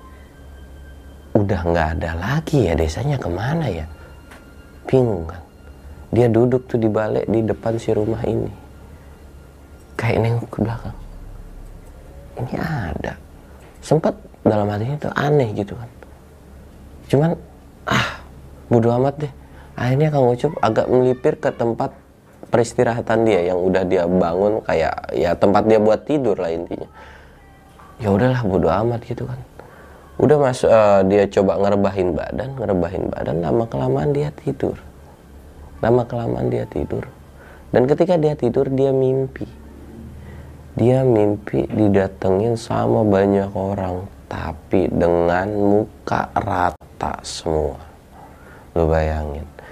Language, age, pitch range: Indonesian, 30-49, 70-115 Hz